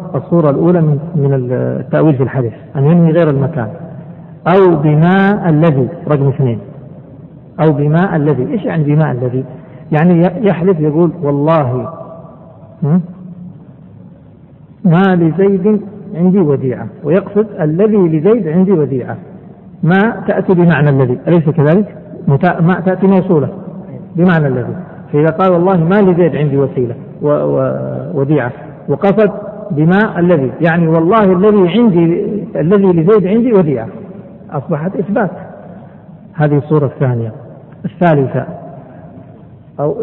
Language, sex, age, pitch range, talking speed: Arabic, male, 50-69, 145-185 Hz, 110 wpm